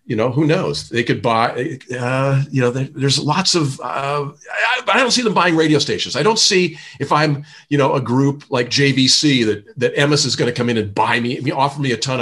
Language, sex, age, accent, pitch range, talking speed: English, male, 40-59, American, 115-150 Hz, 240 wpm